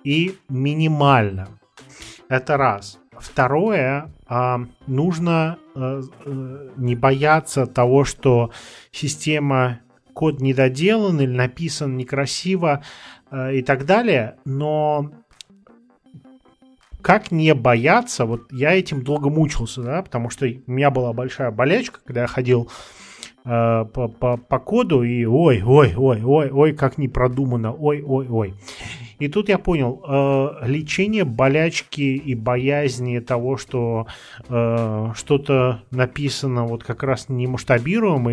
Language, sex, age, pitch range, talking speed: Russian, male, 30-49, 125-155 Hz, 110 wpm